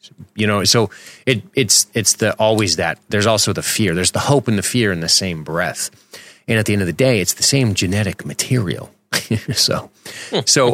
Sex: male